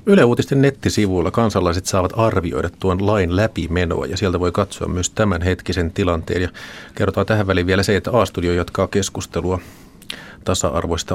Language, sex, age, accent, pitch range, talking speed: Finnish, male, 30-49, native, 90-110 Hz, 145 wpm